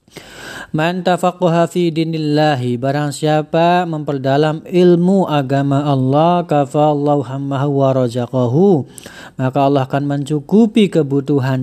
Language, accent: Indonesian, native